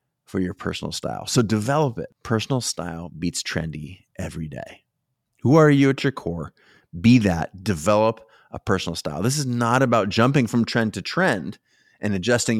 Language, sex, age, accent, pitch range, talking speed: English, male, 30-49, American, 95-125 Hz, 170 wpm